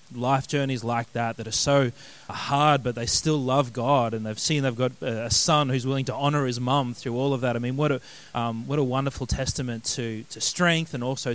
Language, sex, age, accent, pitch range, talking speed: English, male, 20-39, Australian, 130-160 Hz, 235 wpm